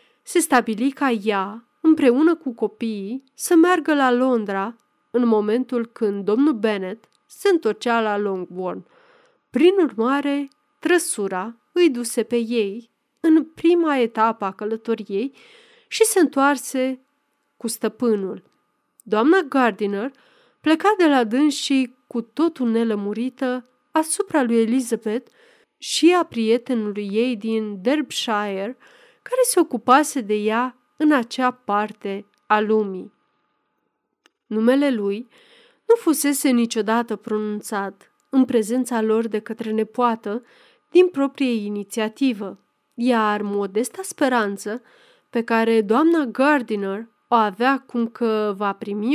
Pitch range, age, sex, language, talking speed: 220-290 Hz, 30-49, female, Romanian, 115 wpm